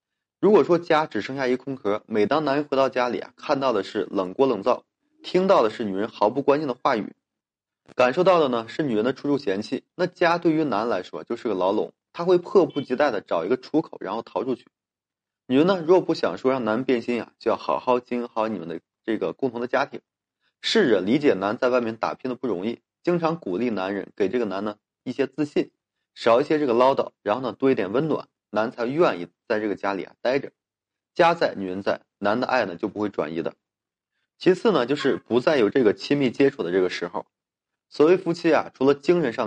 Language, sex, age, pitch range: Chinese, male, 20-39, 120-160 Hz